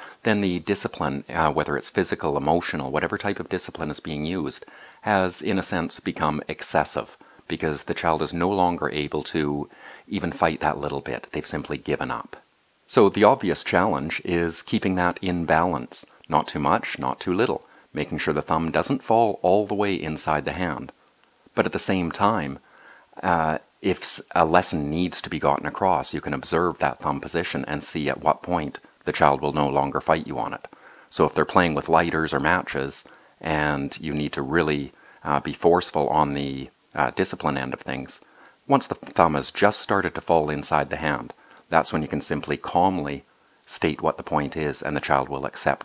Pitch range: 70-85 Hz